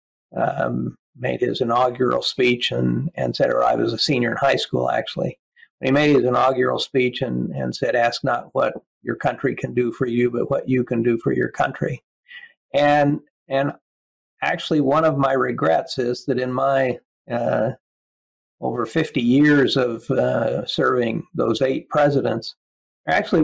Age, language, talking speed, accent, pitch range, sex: 50-69, English, 165 wpm, American, 120-145 Hz, male